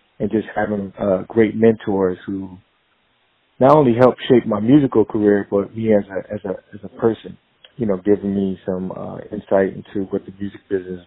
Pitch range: 100-115 Hz